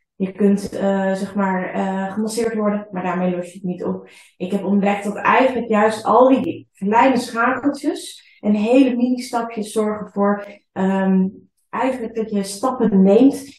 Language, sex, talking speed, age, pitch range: Dutch, female, 160 wpm, 20-39, 195-220 Hz